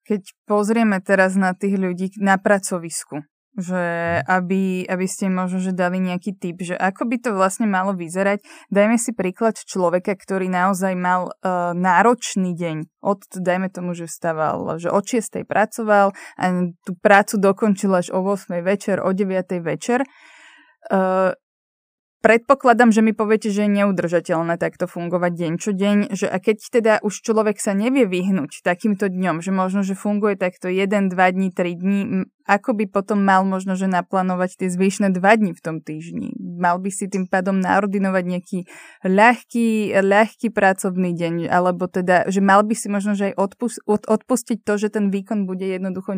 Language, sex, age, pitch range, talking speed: Slovak, female, 20-39, 185-210 Hz, 165 wpm